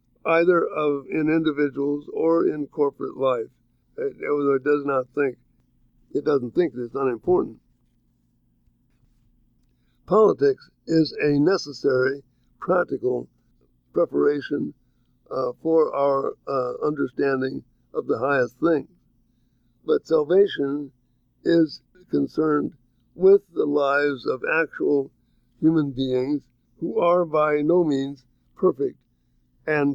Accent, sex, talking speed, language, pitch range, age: American, male, 105 wpm, English, 135-165 Hz, 60-79